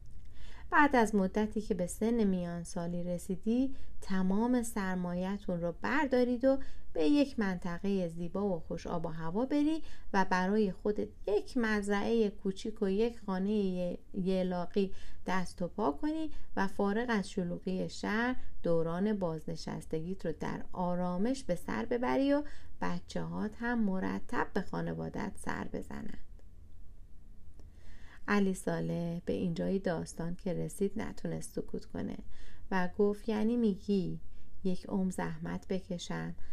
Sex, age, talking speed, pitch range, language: female, 30-49, 125 wpm, 155-210 Hz, Persian